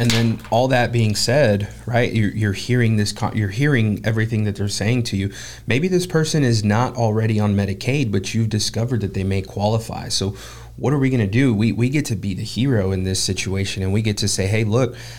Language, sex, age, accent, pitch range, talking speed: English, male, 30-49, American, 100-120 Hz, 230 wpm